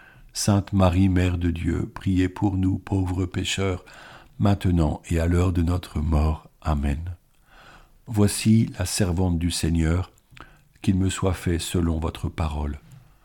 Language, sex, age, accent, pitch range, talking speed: French, male, 50-69, French, 85-105 Hz, 135 wpm